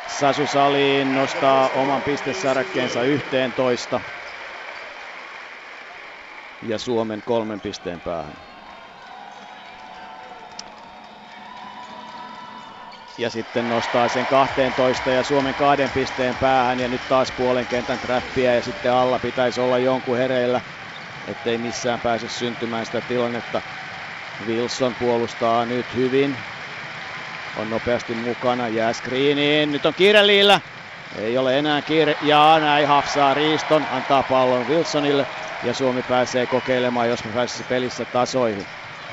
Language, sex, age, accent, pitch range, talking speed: Finnish, male, 50-69, native, 120-145 Hz, 110 wpm